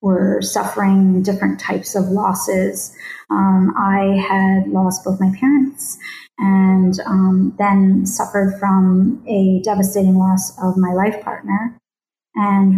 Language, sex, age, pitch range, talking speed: English, female, 30-49, 195-225 Hz, 120 wpm